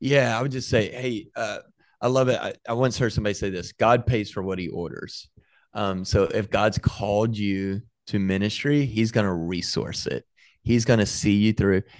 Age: 30-49